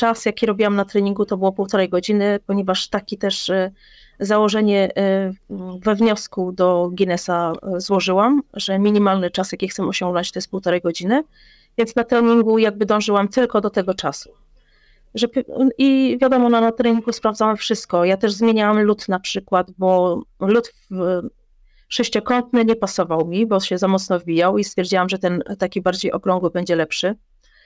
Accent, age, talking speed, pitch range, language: native, 30-49, 150 wpm, 185-225 Hz, Polish